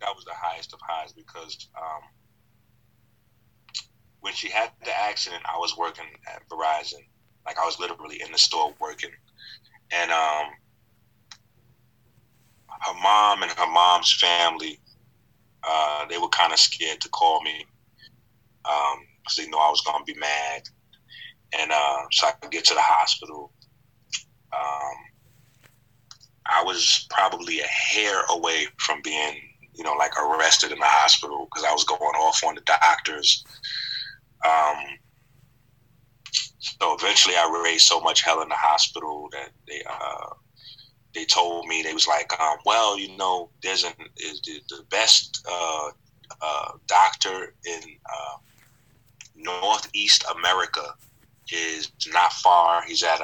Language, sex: English, male